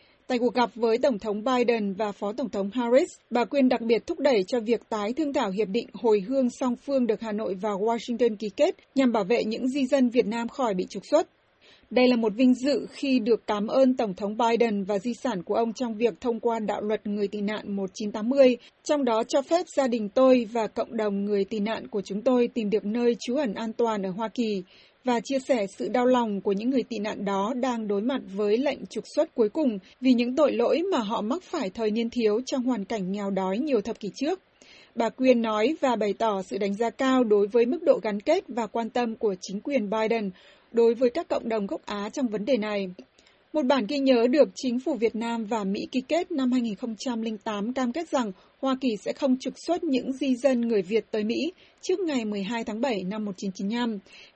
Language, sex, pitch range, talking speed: Vietnamese, female, 215-265 Hz, 235 wpm